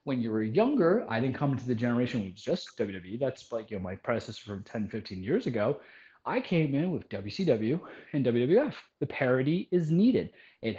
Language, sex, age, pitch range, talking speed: English, male, 20-39, 115-160 Hz, 200 wpm